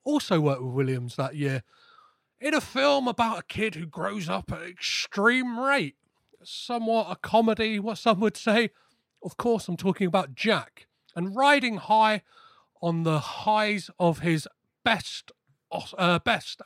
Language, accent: English, British